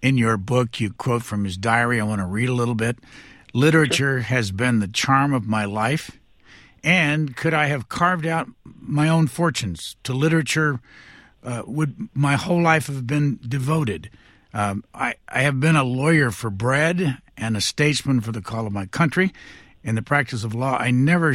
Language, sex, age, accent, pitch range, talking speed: English, male, 60-79, American, 110-145 Hz, 190 wpm